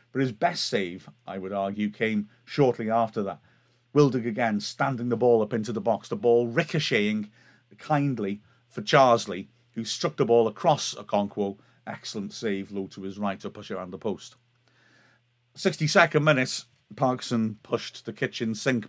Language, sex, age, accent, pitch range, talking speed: English, male, 40-59, British, 105-125 Hz, 160 wpm